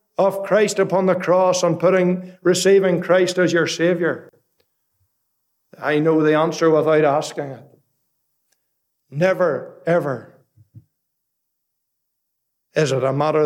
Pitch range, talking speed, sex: 135-180 Hz, 110 wpm, male